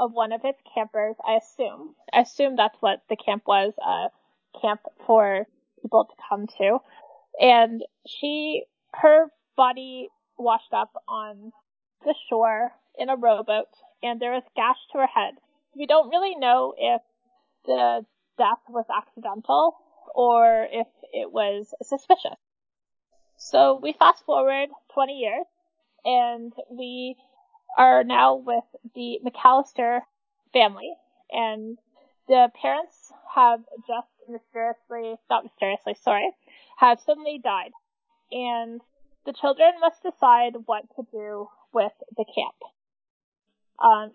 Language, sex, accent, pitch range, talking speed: English, female, American, 225-305 Hz, 125 wpm